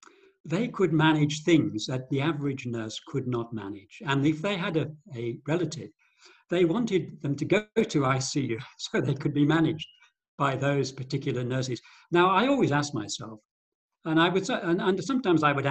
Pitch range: 140-210 Hz